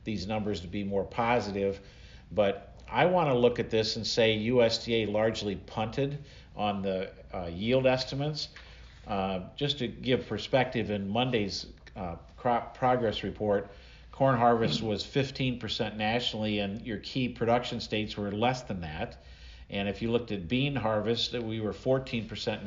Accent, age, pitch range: American, 50-69, 100-115 Hz